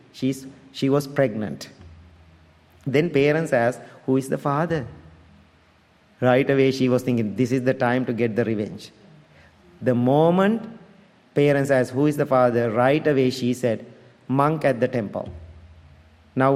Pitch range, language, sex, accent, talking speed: 125-145 Hz, English, male, Indian, 150 wpm